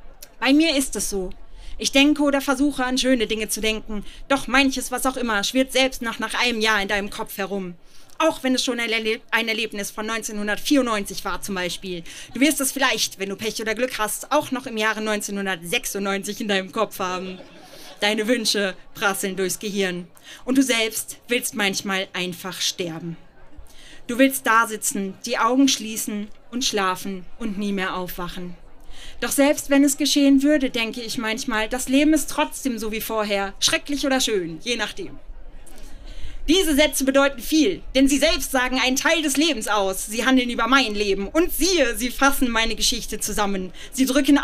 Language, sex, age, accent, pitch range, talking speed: German, female, 30-49, German, 200-270 Hz, 180 wpm